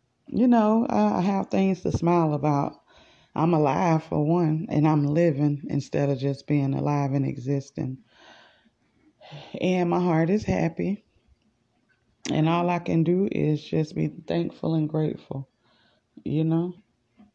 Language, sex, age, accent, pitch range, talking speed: English, female, 20-39, American, 145-190 Hz, 140 wpm